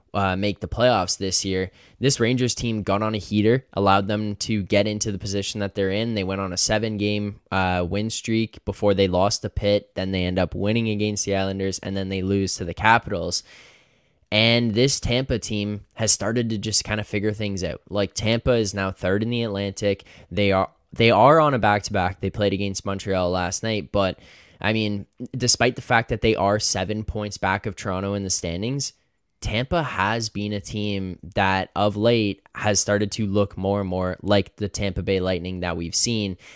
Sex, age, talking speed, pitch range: male, 10-29, 210 wpm, 95-110 Hz